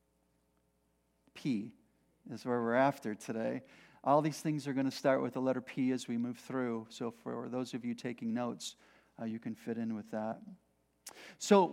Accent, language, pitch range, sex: American, English, 140-180 Hz, male